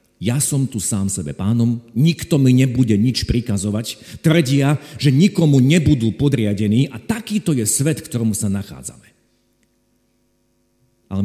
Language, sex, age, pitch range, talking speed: Slovak, male, 50-69, 105-140 Hz, 130 wpm